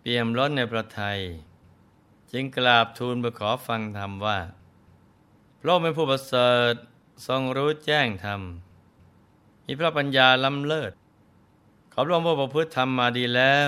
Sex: male